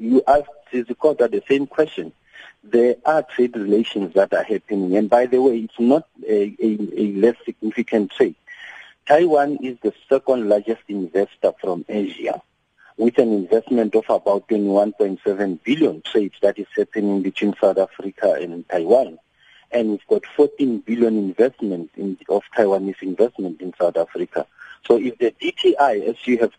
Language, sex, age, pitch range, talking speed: English, male, 50-69, 105-125 Hz, 150 wpm